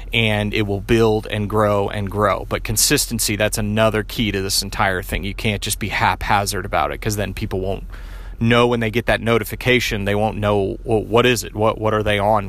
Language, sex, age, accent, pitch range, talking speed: English, male, 30-49, American, 100-120 Hz, 220 wpm